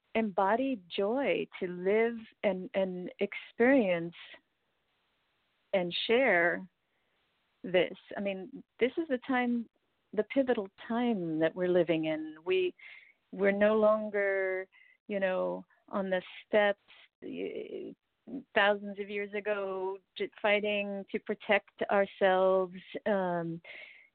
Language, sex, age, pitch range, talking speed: English, female, 40-59, 175-215 Hz, 100 wpm